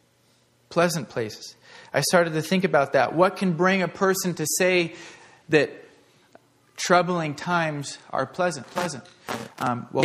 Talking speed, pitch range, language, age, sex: 135 wpm, 130-175 Hz, English, 30-49, male